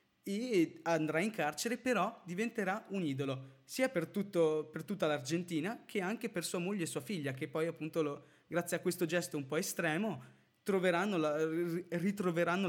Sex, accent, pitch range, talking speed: male, native, 145-185 Hz, 150 wpm